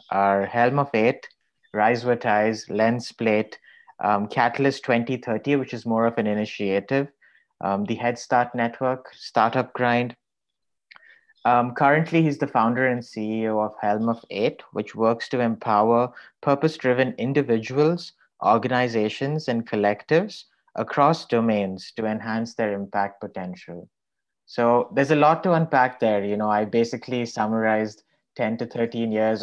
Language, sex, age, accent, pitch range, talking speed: English, male, 30-49, Indian, 105-125 Hz, 140 wpm